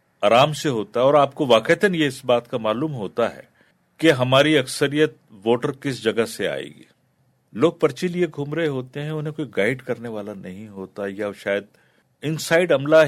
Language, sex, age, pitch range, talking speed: Urdu, male, 50-69, 105-150 Hz, 195 wpm